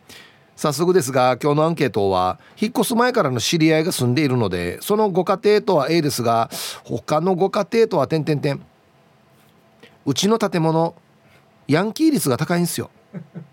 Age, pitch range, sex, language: 40-59, 140-205 Hz, male, Japanese